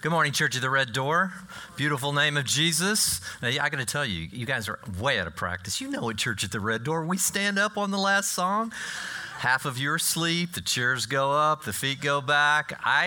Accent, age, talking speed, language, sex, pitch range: American, 40-59, 245 wpm, English, male, 95-135 Hz